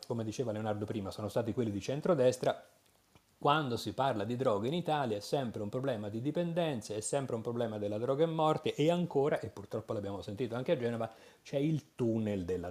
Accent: native